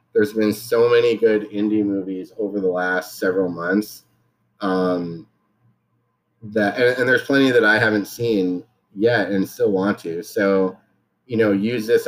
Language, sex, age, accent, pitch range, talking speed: English, male, 30-49, American, 95-115 Hz, 160 wpm